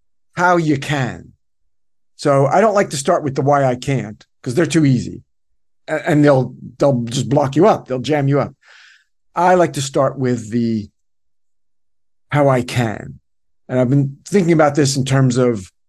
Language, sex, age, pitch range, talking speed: English, male, 50-69, 120-155 Hz, 180 wpm